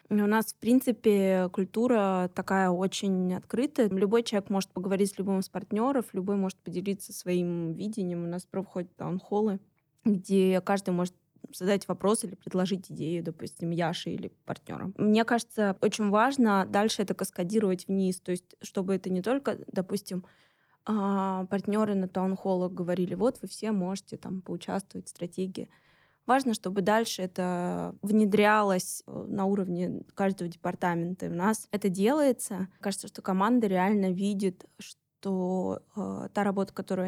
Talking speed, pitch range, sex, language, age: 140 wpm, 185-210 Hz, female, Russian, 20-39